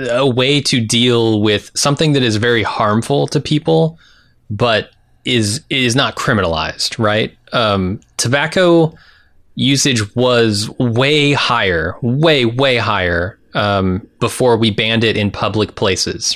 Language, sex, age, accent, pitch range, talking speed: English, male, 20-39, American, 105-140 Hz, 130 wpm